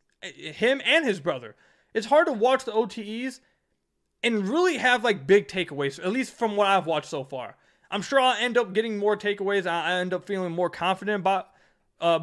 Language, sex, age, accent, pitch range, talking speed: English, male, 20-39, American, 175-215 Hz, 195 wpm